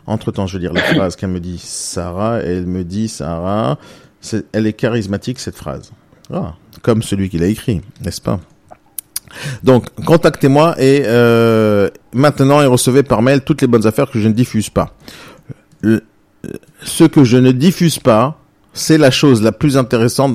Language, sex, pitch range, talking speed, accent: French, male, 105-140 Hz, 175 wpm, French